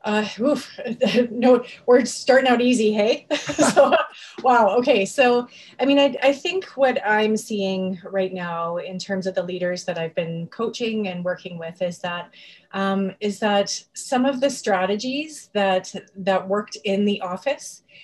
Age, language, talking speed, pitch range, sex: 30-49, English, 165 wpm, 185-220 Hz, female